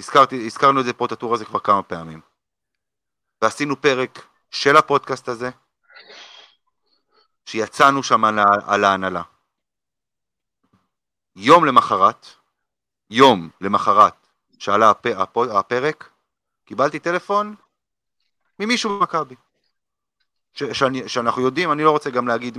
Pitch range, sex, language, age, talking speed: 105-140 Hz, male, Hebrew, 30-49, 110 wpm